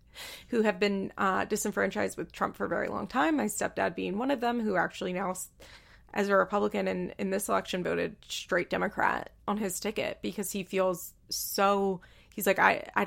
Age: 20-39